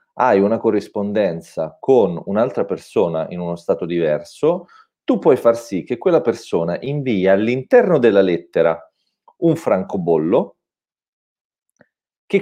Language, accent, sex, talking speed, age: Italian, native, male, 115 wpm, 40-59